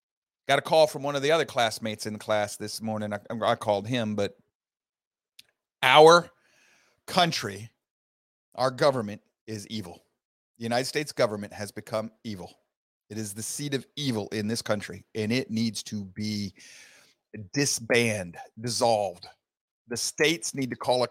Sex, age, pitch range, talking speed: male, 40-59, 110-150 Hz, 155 wpm